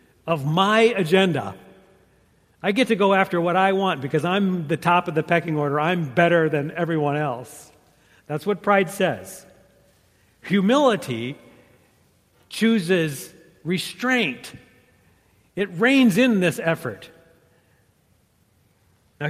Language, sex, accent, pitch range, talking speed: English, male, American, 135-175 Hz, 115 wpm